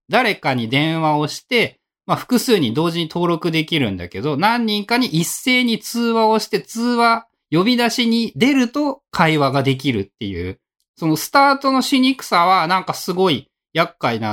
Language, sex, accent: Japanese, male, native